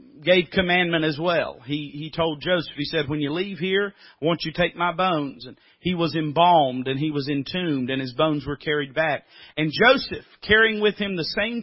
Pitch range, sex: 145-195 Hz, male